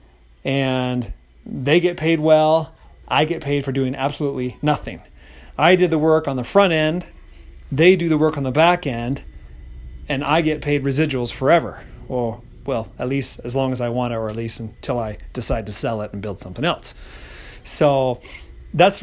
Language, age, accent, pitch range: English, 30-49, American, 120-160 Hz